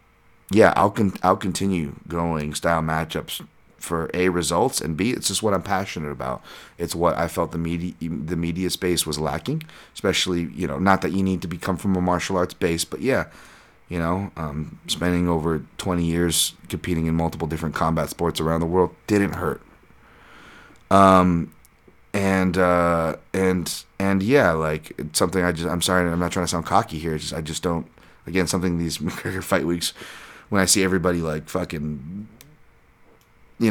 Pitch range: 80-95 Hz